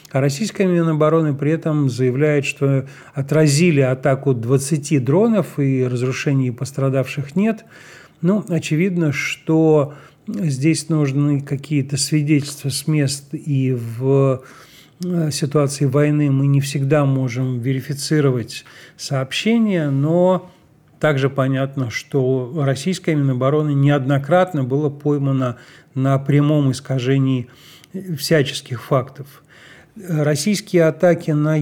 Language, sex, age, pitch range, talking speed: Russian, male, 40-59, 135-160 Hz, 95 wpm